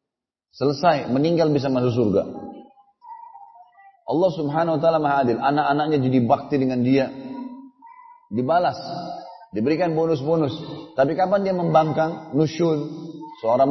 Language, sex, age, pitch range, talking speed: Indonesian, male, 30-49, 125-180 Hz, 110 wpm